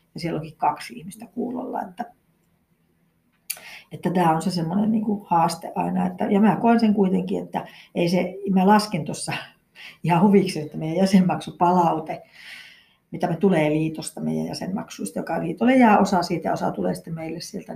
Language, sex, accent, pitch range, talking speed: Finnish, female, native, 175-220 Hz, 170 wpm